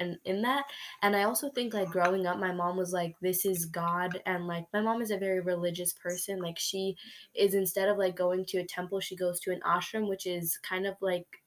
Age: 10-29